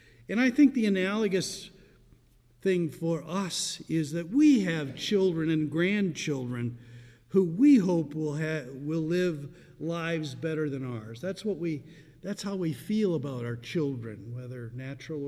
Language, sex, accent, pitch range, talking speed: English, male, American, 120-165 Hz, 150 wpm